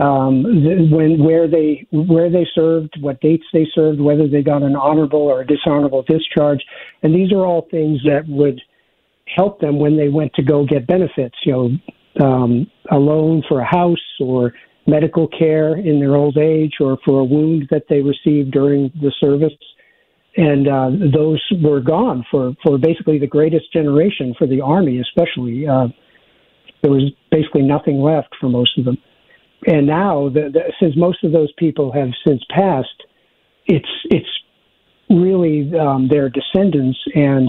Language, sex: English, male